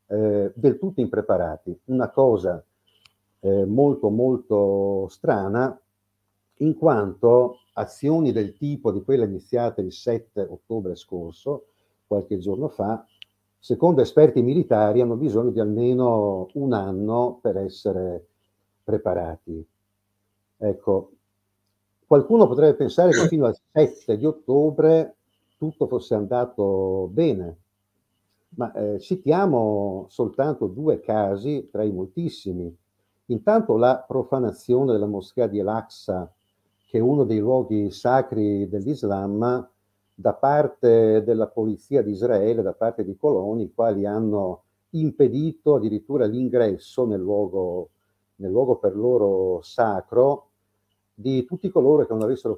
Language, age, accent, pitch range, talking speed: Italian, 50-69, native, 100-125 Hz, 115 wpm